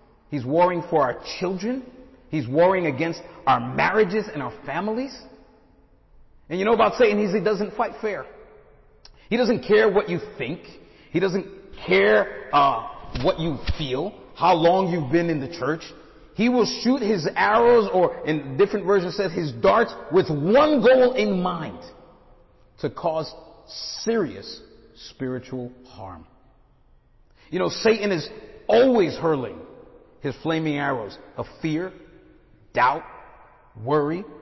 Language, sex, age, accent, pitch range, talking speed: English, male, 40-59, American, 150-210 Hz, 135 wpm